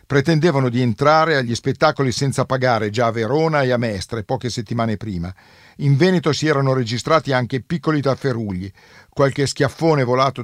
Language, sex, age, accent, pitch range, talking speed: Italian, male, 50-69, native, 115-145 Hz, 155 wpm